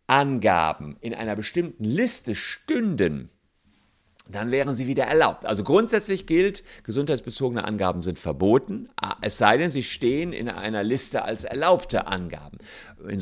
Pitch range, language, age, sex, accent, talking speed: 100-135 Hz, German, 50-69, male, German, 135 wpm